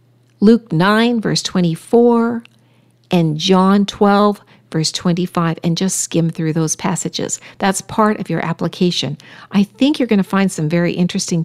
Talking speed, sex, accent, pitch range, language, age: 150 wpm, female, American, 150-200 Hz, English, 50-69